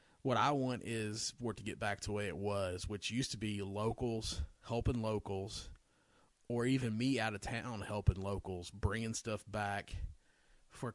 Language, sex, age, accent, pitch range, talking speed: English, male, 30-49, American, 95-110 Hz, 180 wpm